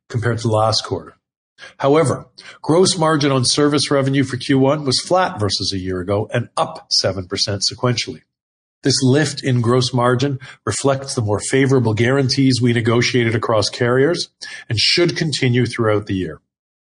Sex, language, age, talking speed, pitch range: male, English, 40-59, 150 wpm, 115-140 Hz